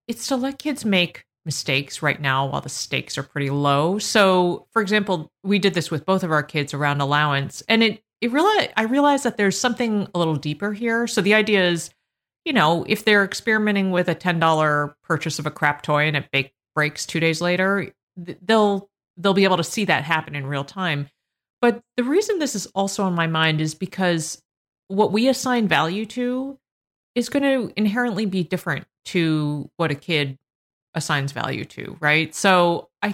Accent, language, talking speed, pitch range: American, English, 195 wpm, 155-210 Hz